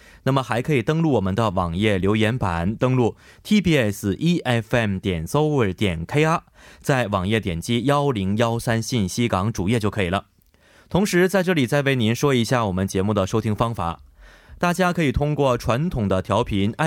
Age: 20-39